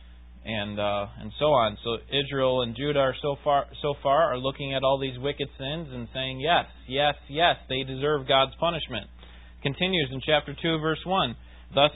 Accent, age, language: American, 20-39, English